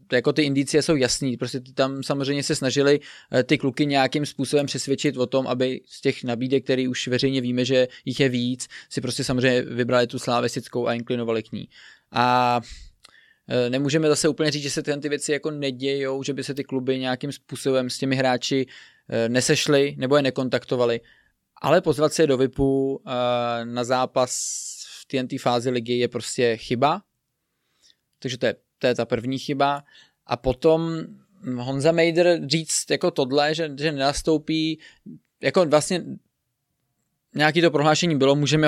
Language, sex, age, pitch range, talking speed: Czech, male, 20-39, 130-150 Hz, 160 wpm